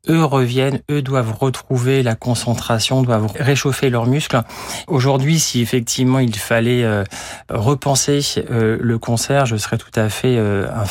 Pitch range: 110-130 Hz